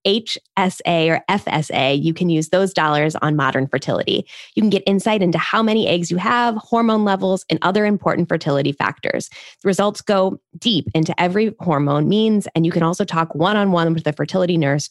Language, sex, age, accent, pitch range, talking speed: English, female, 20-39, American, 150-190 Hz, 185 wpm